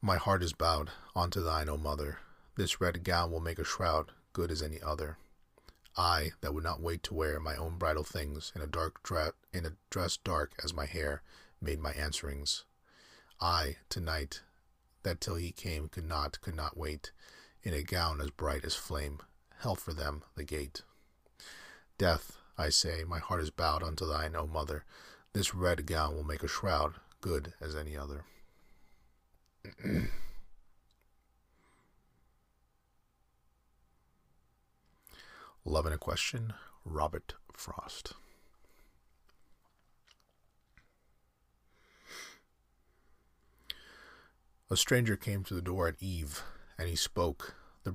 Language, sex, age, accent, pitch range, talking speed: English, male, 40-59, American, 75-90 Hz, 135 wpm